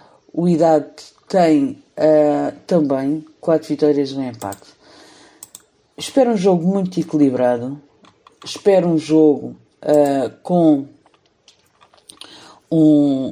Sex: female